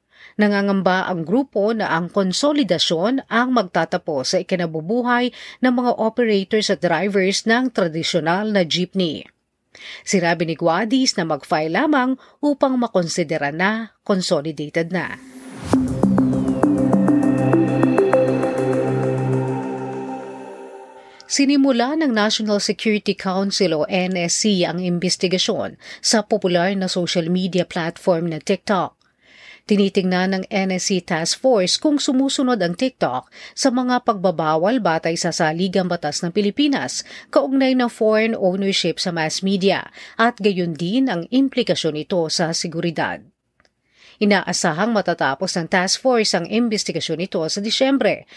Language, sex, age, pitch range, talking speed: Filipino, female, 40-59, 170-235 Hz, 110 wpm